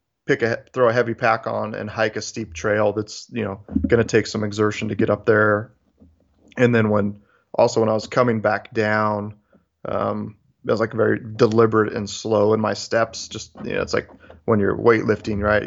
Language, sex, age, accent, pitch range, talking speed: English, male, 30-49, American, 105-115 Hz, 205 wpm